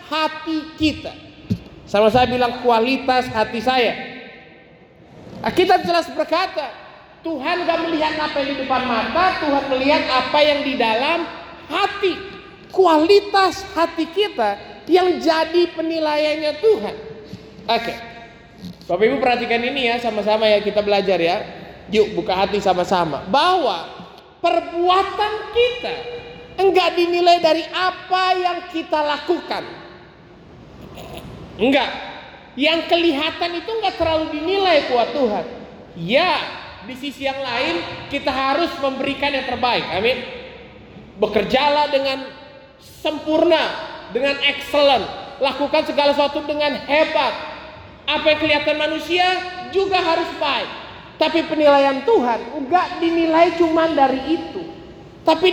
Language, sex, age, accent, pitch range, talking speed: Indonesian, male, 30-49, native, 265-345 Hz, 115 wpm